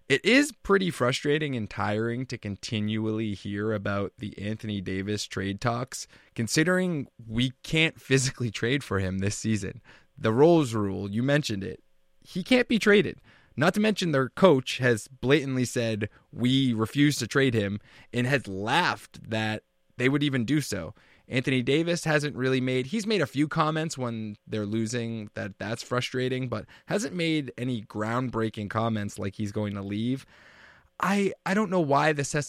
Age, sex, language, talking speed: 20-39, male, English, 165 wpm